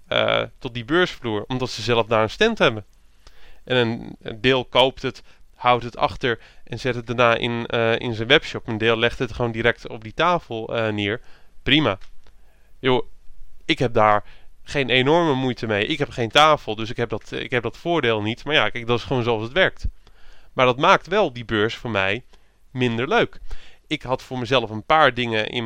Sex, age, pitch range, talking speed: male, 20-39, 115-135 Hz, 195 wpm